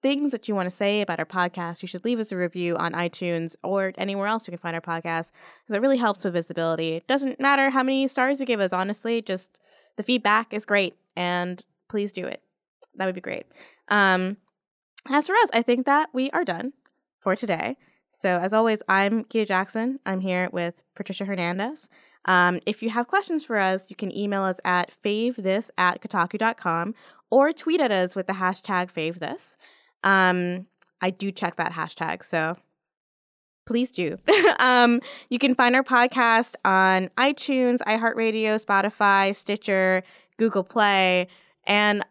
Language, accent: English, American